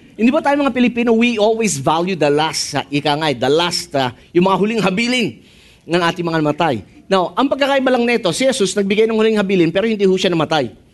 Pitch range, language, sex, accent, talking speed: 170-245 Hz, English, male, Filipino, 215 wpm